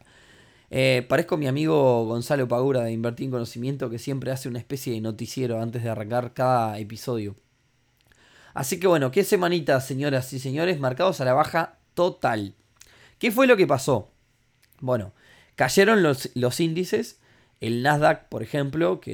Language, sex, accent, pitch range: Spanish, male, Argentinian, 120-160 Hz